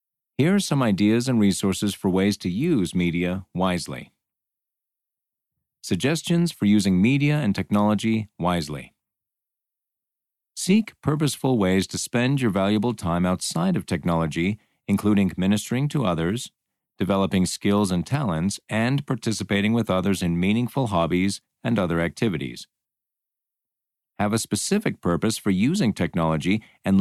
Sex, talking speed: male, 125 wpm